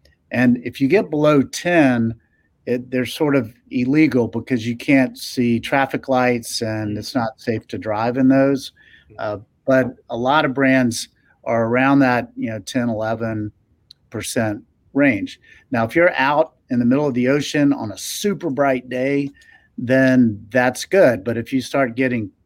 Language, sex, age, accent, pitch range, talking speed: English, male, 50-69, American, 115-135 Hz, 165 wpm